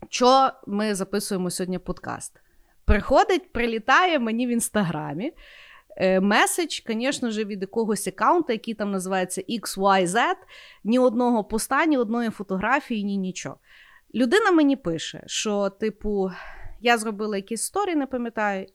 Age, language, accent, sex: 30-49, Ukrainian, native, female